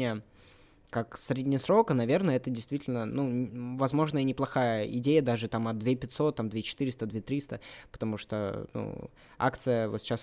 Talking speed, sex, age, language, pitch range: 155 wpm, male, 20-39, Turkish, 110-130 Hz